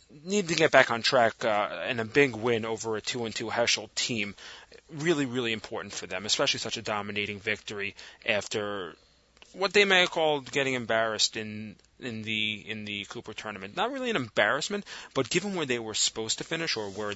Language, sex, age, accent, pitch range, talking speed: English, male, 30-49, American, 110-140 Hz, 195 wpm